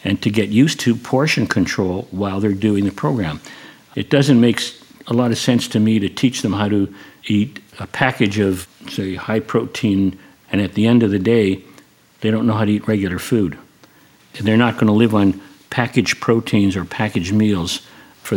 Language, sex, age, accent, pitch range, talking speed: English, male, 60-79, American, 95-115 Hz, 195 wpm